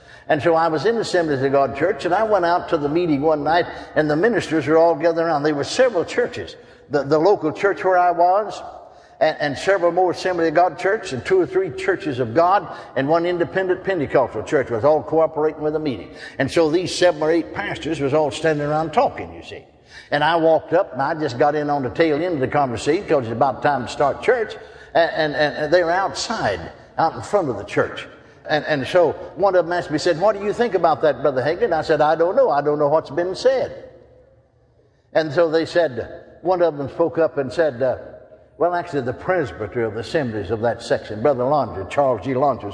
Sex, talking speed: male, 235 wpm